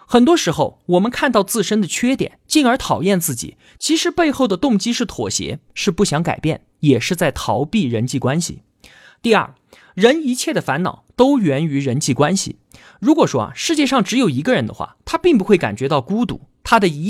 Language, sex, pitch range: Chinese, male, 160-250 Hz